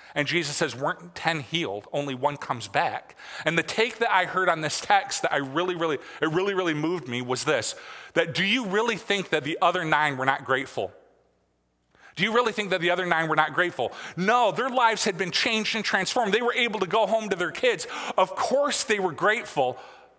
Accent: American